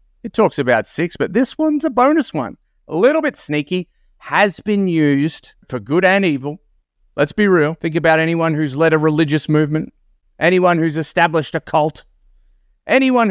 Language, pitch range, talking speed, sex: English, 120-175 Hz, 170 wpm, male